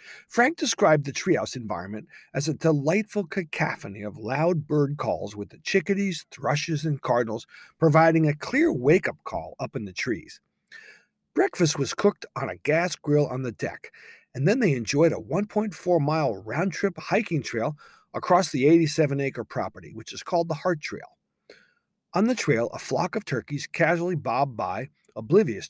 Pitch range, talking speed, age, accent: 130-180 Hz, 160 wpm, 40-59, American